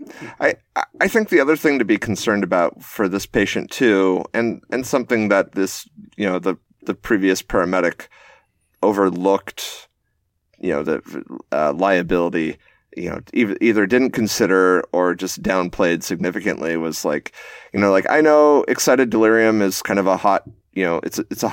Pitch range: 90-110 Hz